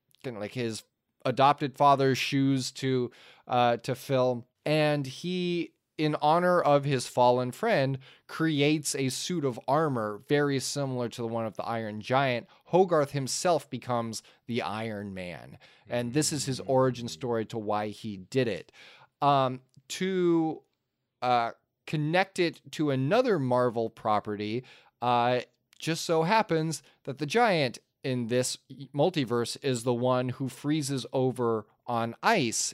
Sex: male